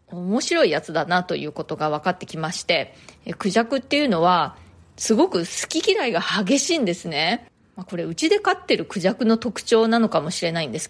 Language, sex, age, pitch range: Japanese, female, 20-39, 175-255 Hz